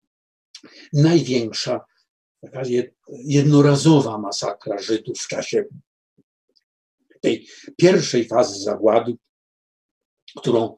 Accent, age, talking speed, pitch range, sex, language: native, 50-69, 60 wpm, 115-155 Hz, male, Polish